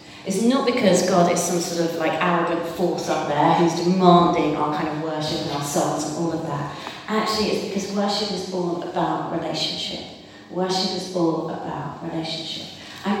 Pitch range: 160-195 Hz